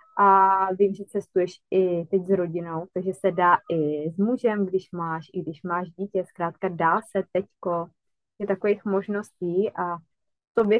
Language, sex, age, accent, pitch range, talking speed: Czech, female, 20-39, native, 180-205 Hz, 160 wpm